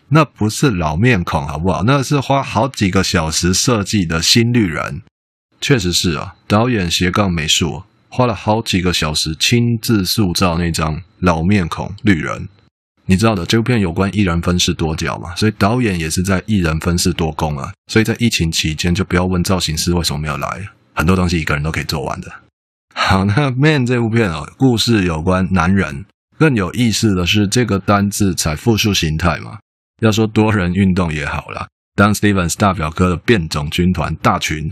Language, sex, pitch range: Chinese, male, 80-110 Hz